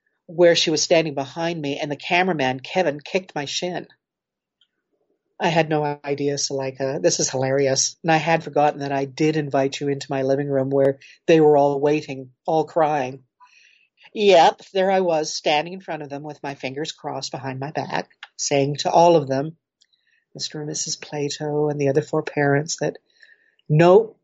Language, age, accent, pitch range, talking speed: English, 50-69, American, 140-180 Hz, 190 wpm